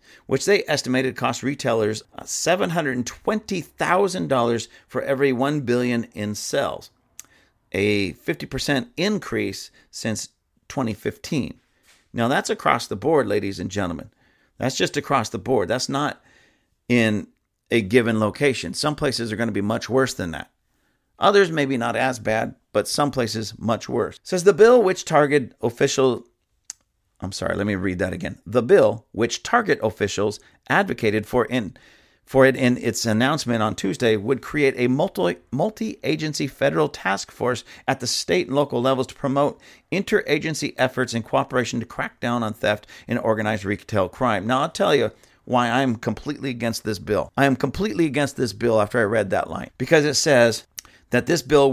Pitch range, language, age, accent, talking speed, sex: 115-145 Hz, English, 40-59, American, 165 wpm, male